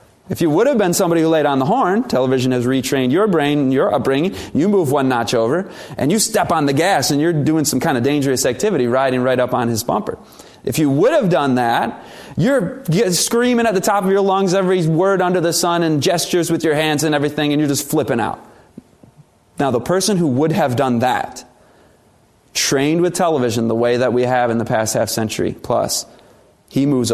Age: 30-49